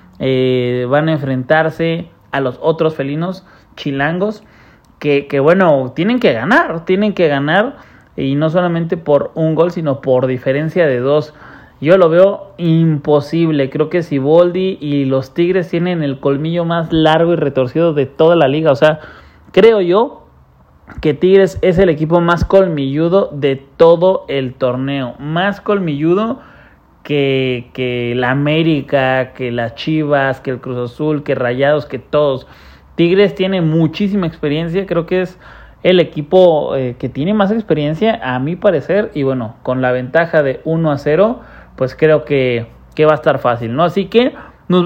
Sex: male